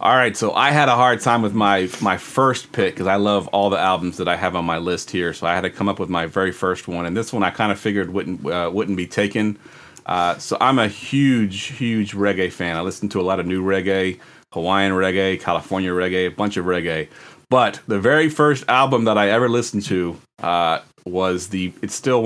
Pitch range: 85-100 Hz